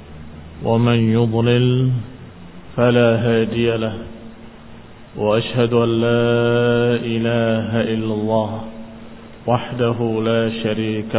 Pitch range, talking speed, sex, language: 110-120 Hz, 75 wpm, male, Indonesian